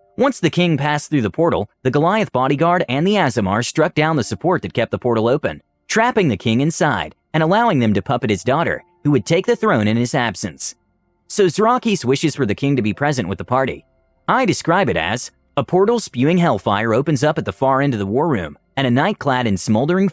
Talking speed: 230 wpm